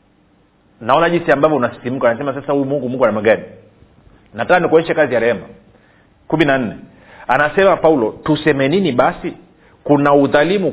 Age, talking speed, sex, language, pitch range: 40-59, 135 wpm, male, Swahili, 135-180 Hz